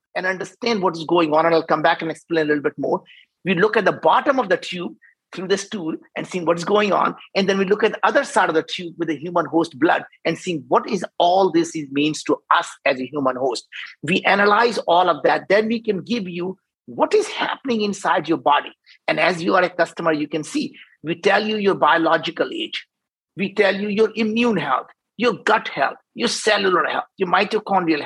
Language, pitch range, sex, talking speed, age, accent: English, 170-220 Hz, male, 225 wpm, 50-69, Indian